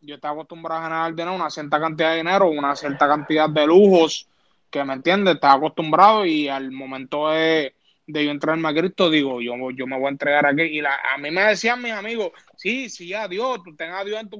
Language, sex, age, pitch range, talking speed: Spanish, male, 20-39, 155-200 Hz, 235 wpm